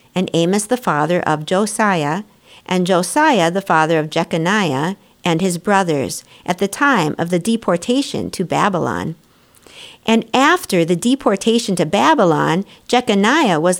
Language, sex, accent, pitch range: English, female, American, 170-230 Hz